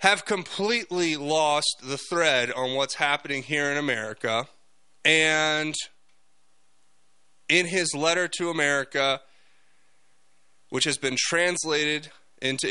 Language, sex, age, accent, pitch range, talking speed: English, male, 30-49, American, 130-165 Hz, 105 wpm